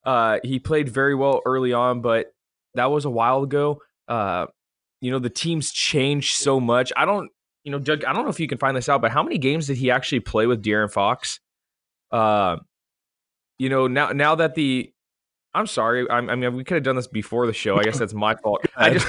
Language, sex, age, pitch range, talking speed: English, male, 20-39, 125-155 Hz, 235 wpm